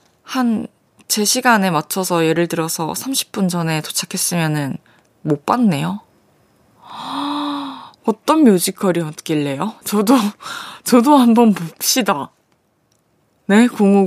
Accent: native